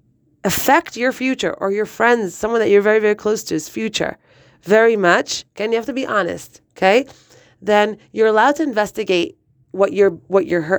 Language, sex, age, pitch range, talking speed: English, female, 30-49, 150-200 Hz, 190 wpm